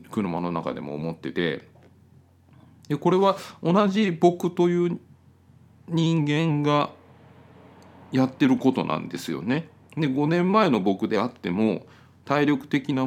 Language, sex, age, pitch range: Japanese, male, 40-59, 105-165 Hz